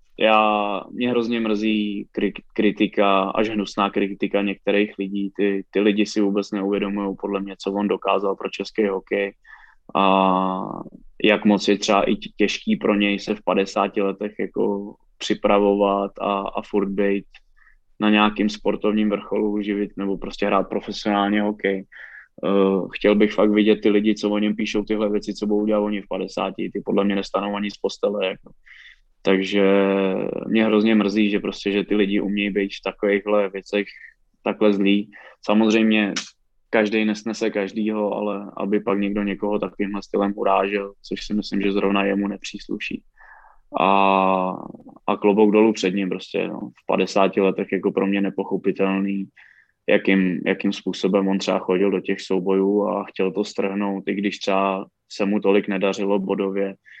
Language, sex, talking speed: English, male, 155 wpm